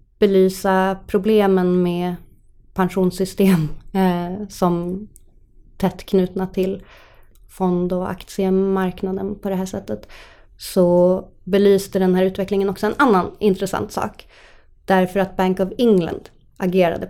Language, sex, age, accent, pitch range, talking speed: Swedish, female, 20-39, native, 180-200 Hz, 110 wpm